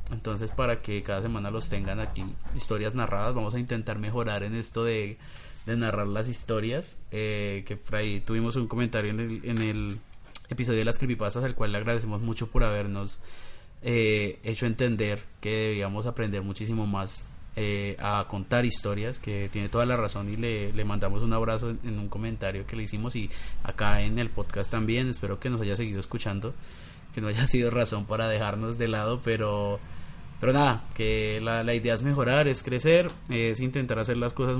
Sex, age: male, 20-39